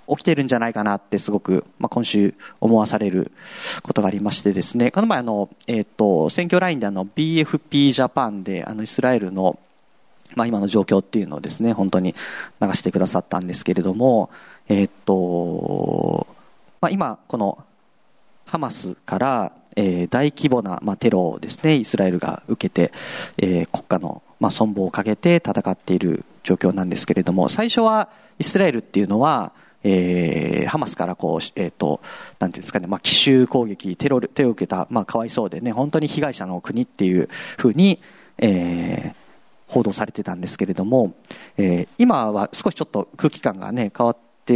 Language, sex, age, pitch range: Japanese, male, 40-59, 95-145 Hz